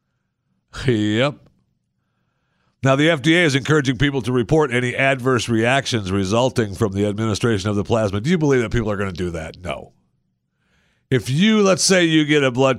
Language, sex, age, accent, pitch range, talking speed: English, male, 50-69, American, 90-125 Hz, 180 wpm